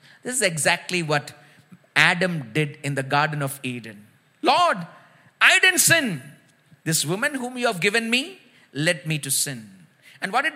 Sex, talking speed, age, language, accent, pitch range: male, 165 wpm, 50-69, English, Indian, 160-220 Hz